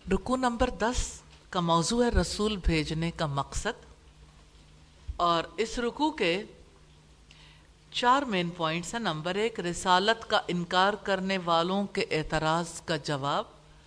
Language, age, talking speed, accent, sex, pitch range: English, 50-69, 125 wpm, Indian, female, 160-225 Hz